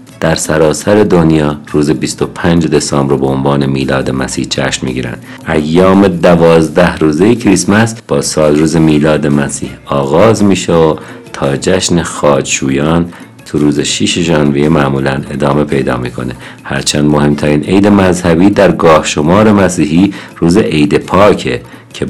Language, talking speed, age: Persian, 135 wpm, 50-69